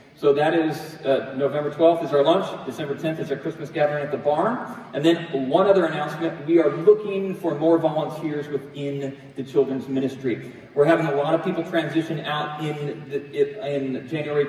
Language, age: English, 40-59